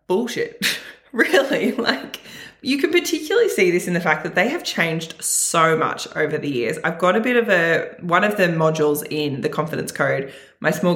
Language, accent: English, Australian